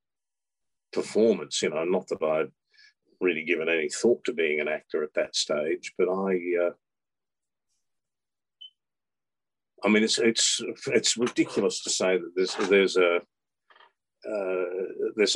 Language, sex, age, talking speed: English, male, 50-69, 125 wpm